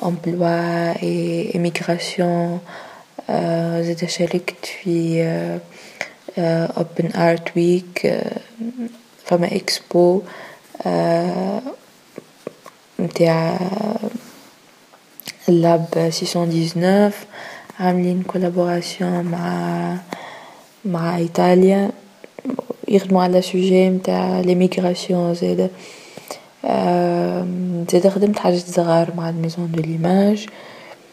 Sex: female